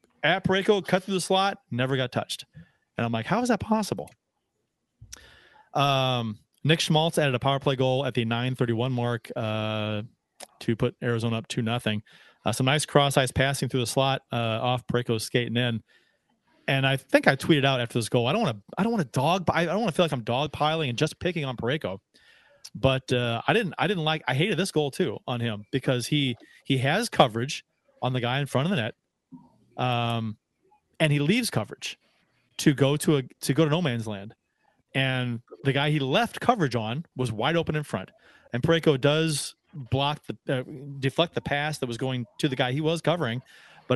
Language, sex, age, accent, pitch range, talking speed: English, male, 30-49, American, 125-165 Hz, 210 wpm